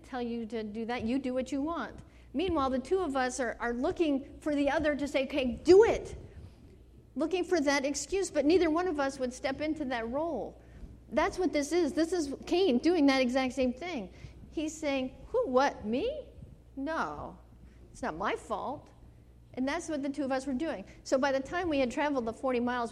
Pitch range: 240-320 Hz